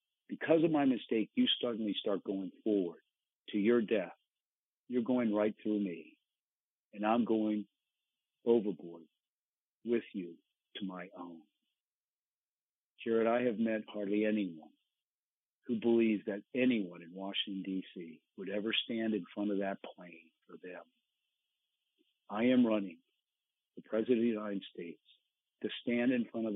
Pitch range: 100-120 Hz